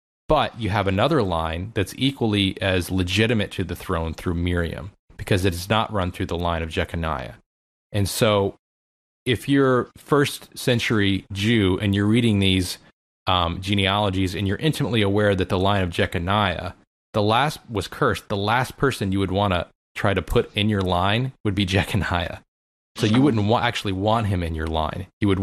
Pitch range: 90-110 Hz